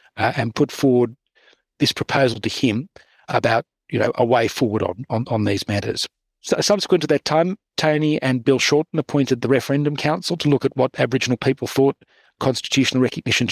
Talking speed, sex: 180 wpm, male